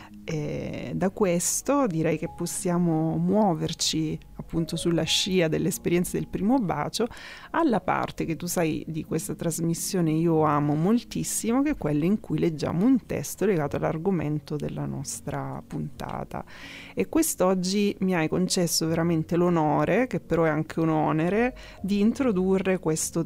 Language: Italian